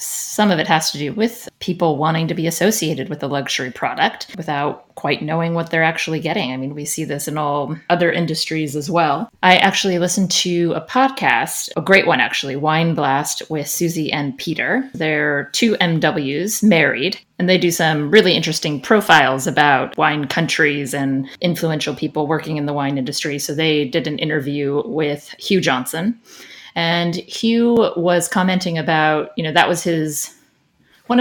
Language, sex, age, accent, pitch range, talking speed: English, female, 30-49, American, 145-175 Hz, 175 wpm